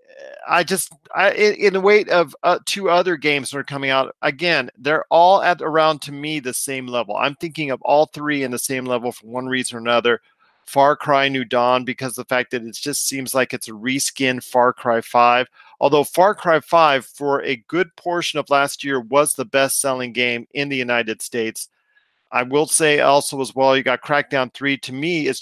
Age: 40-59